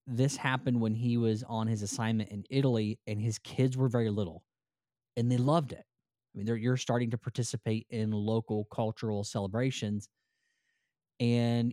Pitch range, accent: 110-125 Hz, American